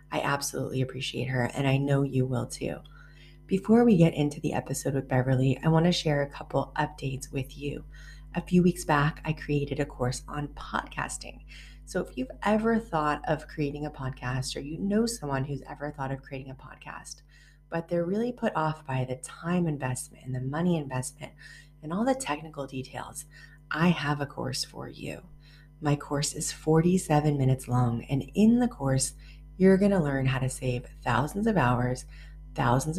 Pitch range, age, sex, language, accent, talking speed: 130-155 Hz, 30-49, female, English, American, 185 wpm